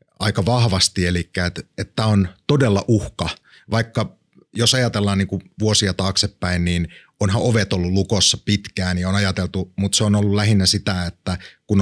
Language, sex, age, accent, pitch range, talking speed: Finnish, male, 30-49, native, 95-110 Hz, 155 wpm